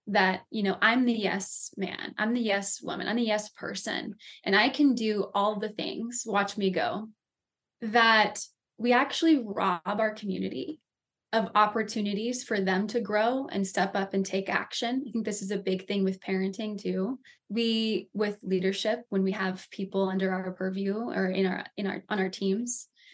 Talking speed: 185 wpm